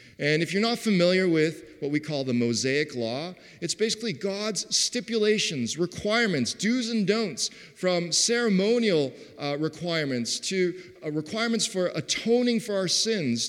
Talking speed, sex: 140 wpm, male